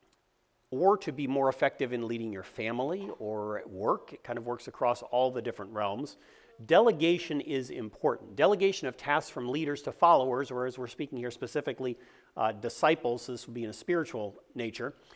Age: 40-59